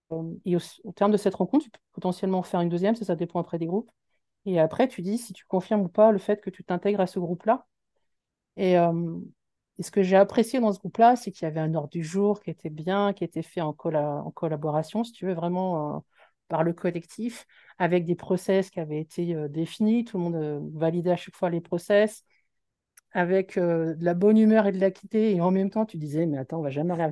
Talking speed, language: 250 wpm, French